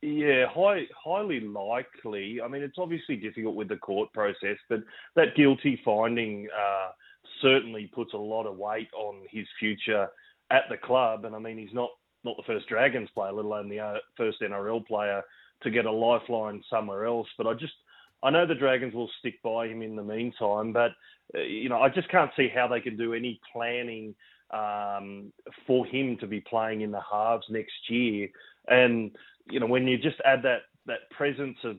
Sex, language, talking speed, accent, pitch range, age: male, English, 190 wpm, Australian, 105-125 Hz, 30-49